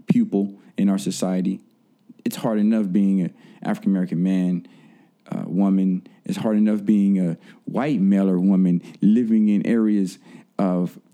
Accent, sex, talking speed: American, male, 140 wpm